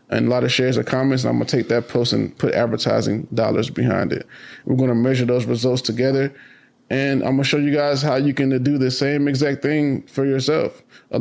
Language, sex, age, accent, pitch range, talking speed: English, male, 20-39, American, 125-140 Hz, 240 wpm